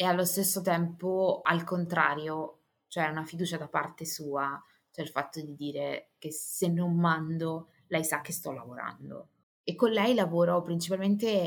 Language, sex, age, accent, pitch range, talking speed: Italian, female, 20-39, native, 160-190 Hz, 160 wpm